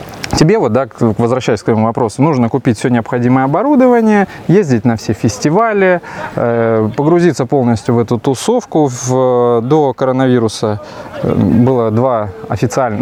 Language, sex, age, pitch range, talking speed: Russian, male, 20-39, 115-150 Hz, 120 wpm